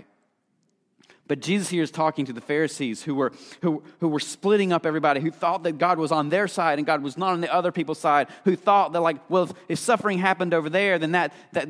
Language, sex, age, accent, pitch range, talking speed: English, male, 40-59, American, 140-190 Hz, 240 wpm